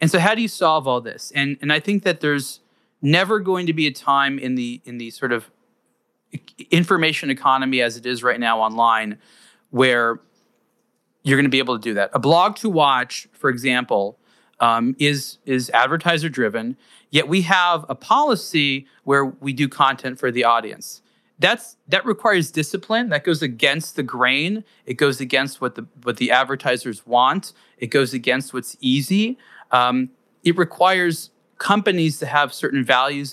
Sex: male